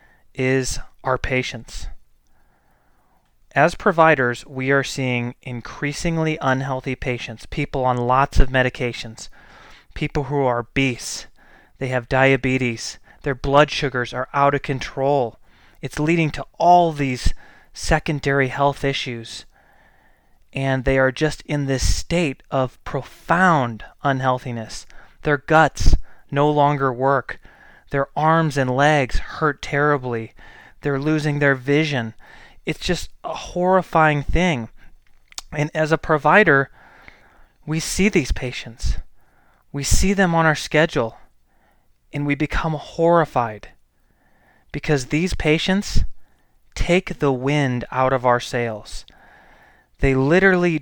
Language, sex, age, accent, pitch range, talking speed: English, male, 20-39, American, 125-155 Hz, 115 wpm